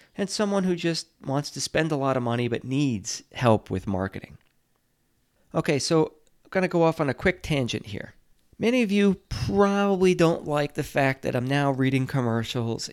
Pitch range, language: 115-160 Hz, English